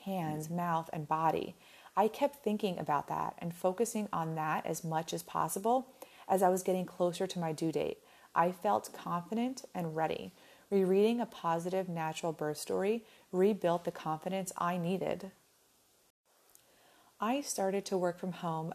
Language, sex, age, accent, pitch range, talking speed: English, female, 30-49, American, 160-190 Hz, 155 wpm